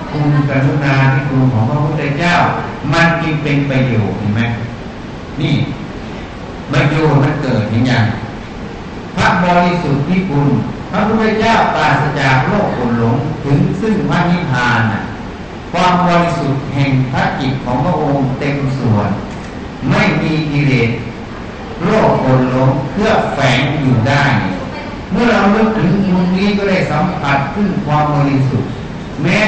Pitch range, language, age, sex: 130-180 Hz, Thai, 60-79, male